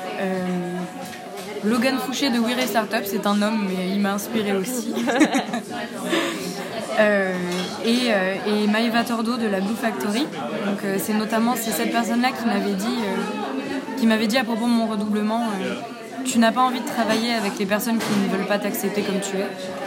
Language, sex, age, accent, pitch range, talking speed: French, female, 20-39, French, 205-235 Hz, 180 wpm